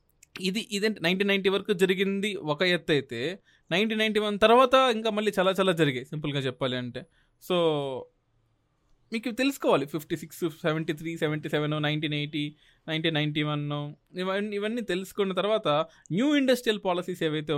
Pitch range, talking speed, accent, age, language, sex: 135-170 Hz, 135 wpm, native, 20-39, Telugu, male